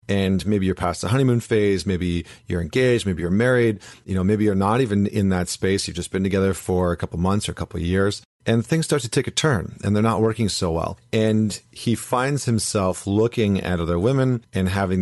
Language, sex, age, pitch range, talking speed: English, male, 40-59, 90-110 Hz, 235 wpm